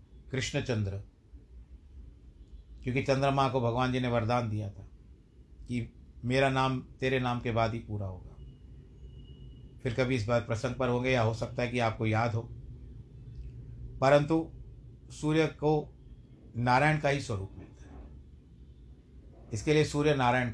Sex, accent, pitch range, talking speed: male, native, 90-135 Hz, 145 wpm